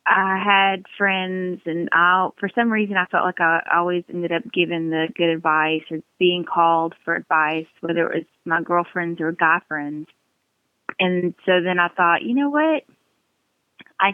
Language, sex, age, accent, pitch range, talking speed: English, female, 30-49, American, 175-235 Hz, 170 wpm